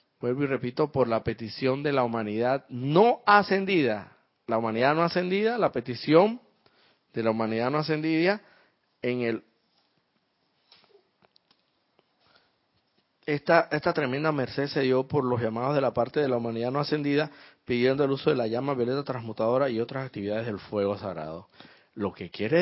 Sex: male